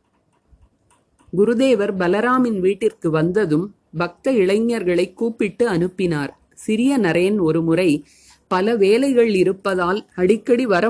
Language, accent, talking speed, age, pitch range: Tamil, native, 90 wpm, 30-49, 175-225 Hz